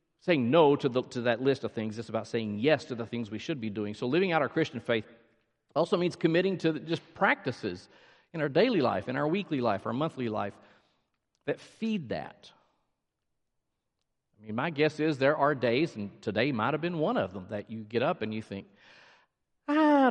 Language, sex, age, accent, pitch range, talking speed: English, male, 50-69, American, 115-165 Hz, 210 wpm